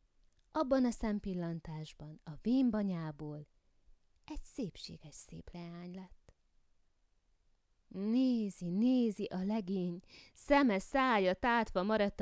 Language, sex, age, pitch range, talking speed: Hungarian, female, 20-39, 160-220 Hz, 90 wpm